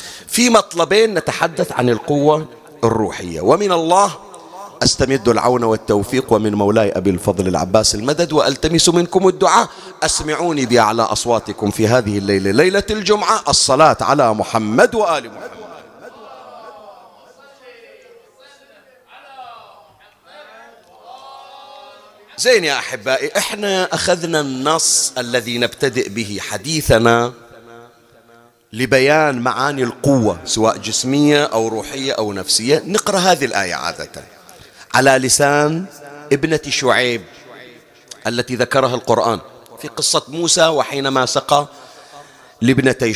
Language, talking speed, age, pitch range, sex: Arabic, 95 wpm, 40-59, 120-165 Hz, male